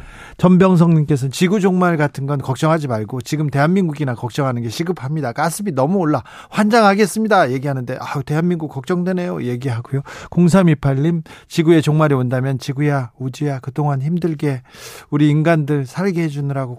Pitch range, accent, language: 130-170 Hz, native, Korean